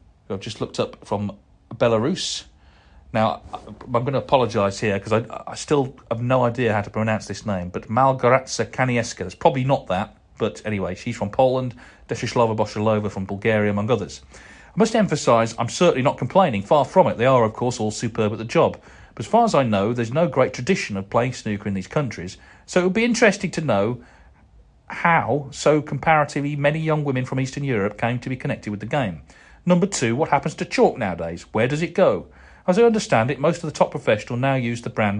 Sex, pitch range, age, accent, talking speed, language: male, 105-135 Hz, 40-59, British, 210 wpm, English